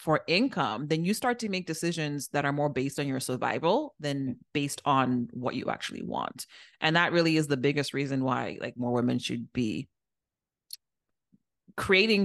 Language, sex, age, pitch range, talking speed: English, female, 30-49, 135-165 Hz, 175 wpm